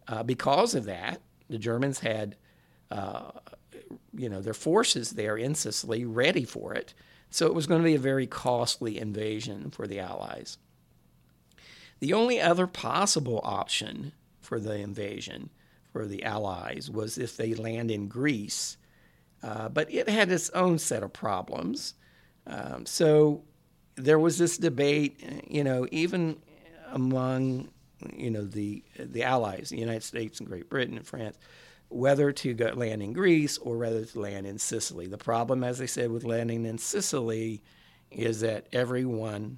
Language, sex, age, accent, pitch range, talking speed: English, male, 50-69, American, 105-140 Hz, 160 wpm